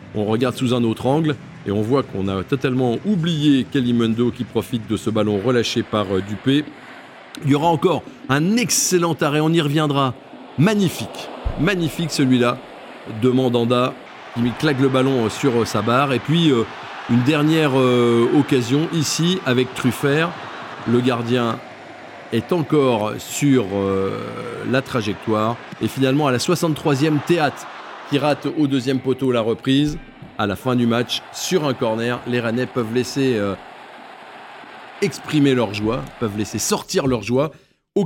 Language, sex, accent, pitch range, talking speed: French, male, French, 115-145 Hz, 145 wpm